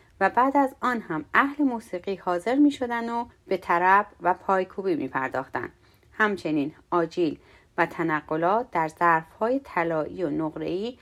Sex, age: female, 30-49